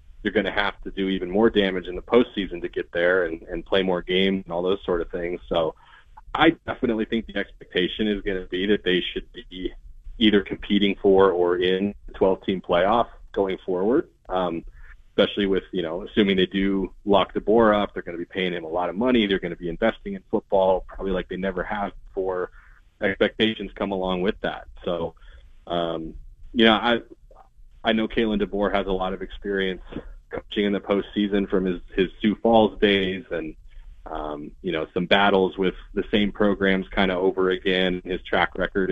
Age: 30-49